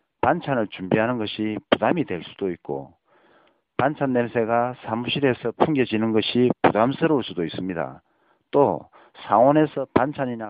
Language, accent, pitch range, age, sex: Korean, native, 105-140 Hz, 40-59, male